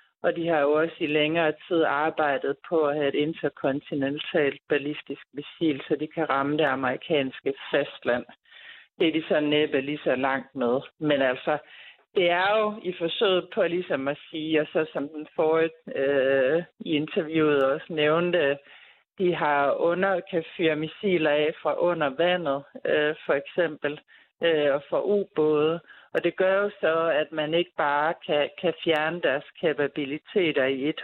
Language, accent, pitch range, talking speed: Danish, native, 145-170 Hz, 165 wpm